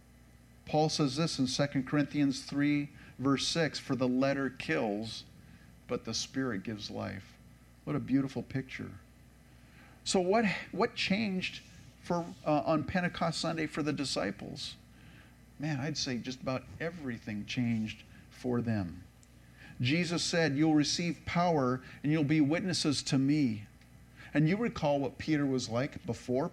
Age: 50-69